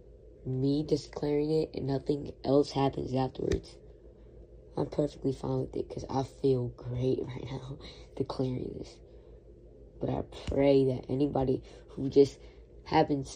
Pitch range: 125-140 Hz